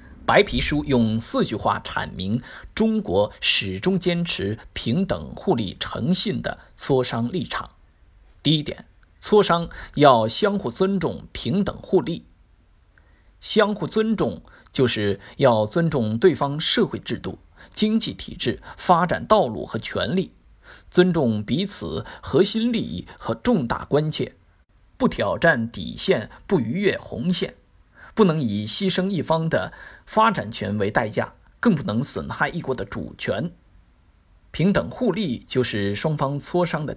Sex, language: male, Chinese